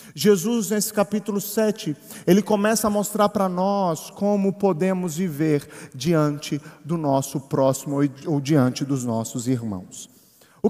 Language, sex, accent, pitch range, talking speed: Portuguese, male, Brazilian, 170-225 Hz, 130 wpm